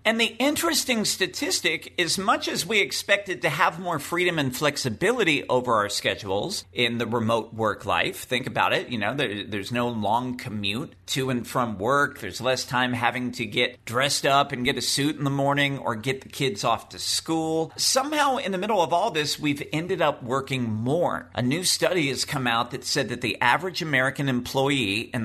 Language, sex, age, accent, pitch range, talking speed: English, male, 50-69, American, 125-175 Hz, 200 wpm